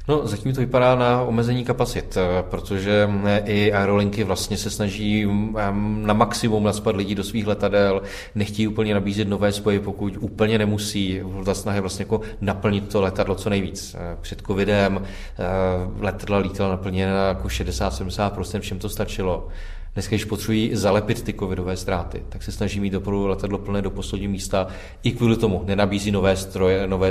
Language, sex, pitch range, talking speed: Czech, male, 95-105 Hz, 155 wpm